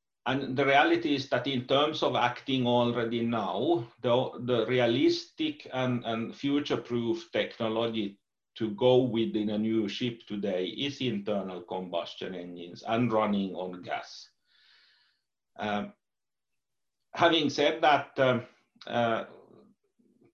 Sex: male